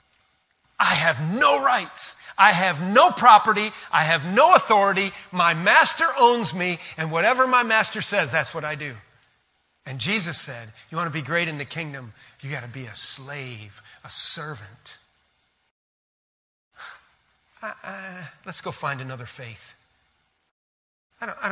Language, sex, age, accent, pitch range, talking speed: English, male, 40-59, American, 125-185 Hz, 145 wpm